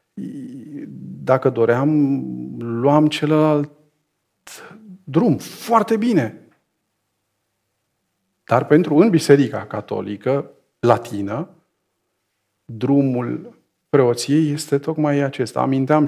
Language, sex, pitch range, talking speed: English, male, 115-150 Hz, 75 wpm